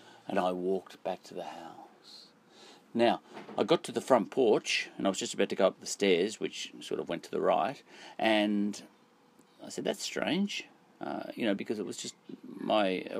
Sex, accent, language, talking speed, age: male, Australian, English, 200 wpm, 40-59